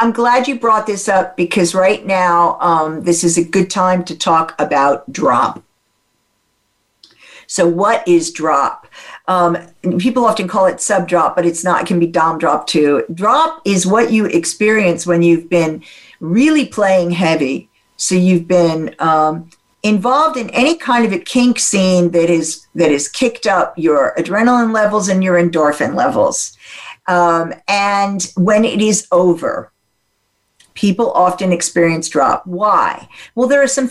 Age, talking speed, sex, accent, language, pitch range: 50-69, 160 wpm, female, American, English, 165-215 Hz